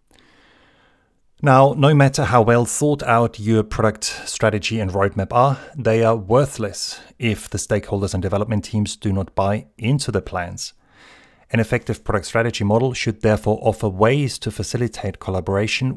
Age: 30-49